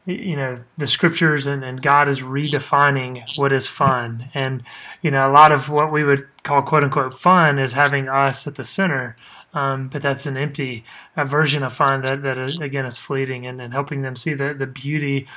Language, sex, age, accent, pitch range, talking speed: English, male, 30-49, American, 135-150 Hz, 210 wpm